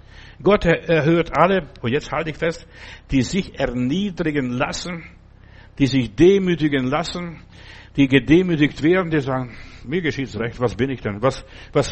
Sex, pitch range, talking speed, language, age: male, 120-165 Hz, 155 wpm, German, 60-79